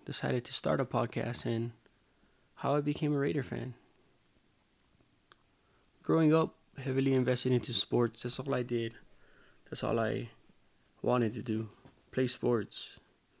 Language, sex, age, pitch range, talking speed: English, male, 20-39, 115-130 Hz, 135 wpm